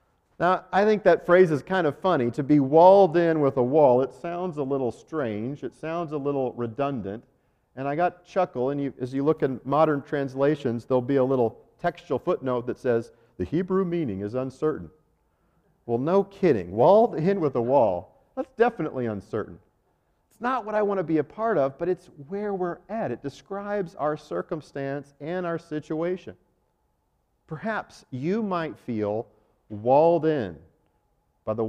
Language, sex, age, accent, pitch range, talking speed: English, male, 50-69, American, 115-170 Hz, 175 wpm